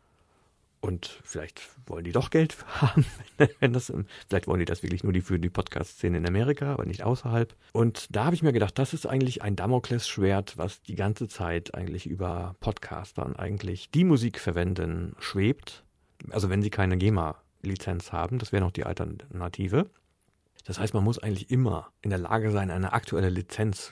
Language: German